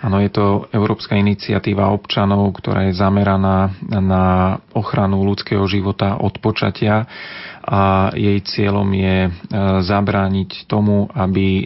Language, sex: Slovak, male